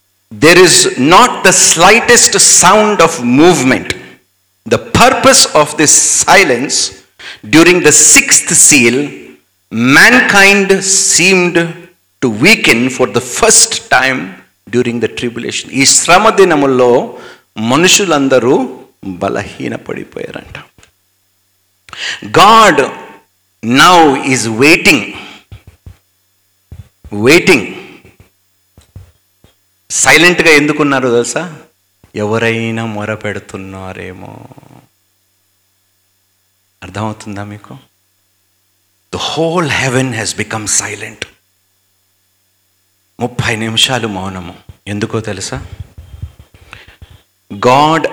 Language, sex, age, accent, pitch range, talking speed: Telugu, male, 50-69, native, 95-135 Hz, 70 wpm